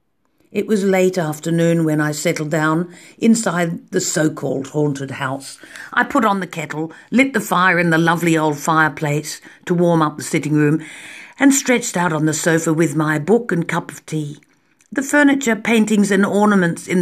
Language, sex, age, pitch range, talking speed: English, female, 50-69, 155-215 Hz, 180 wpm